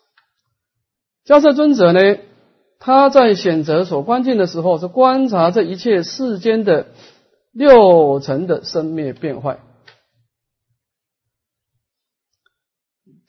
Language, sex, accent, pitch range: Chinese, male, native, 160-260 Hz